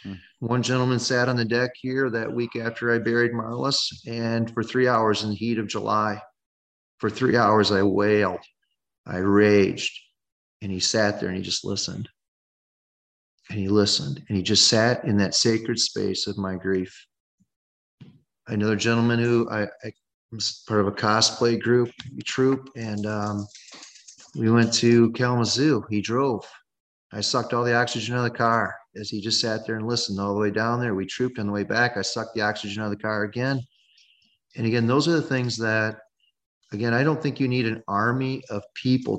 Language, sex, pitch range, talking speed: English, male, 105-120 Hz, 190 wpm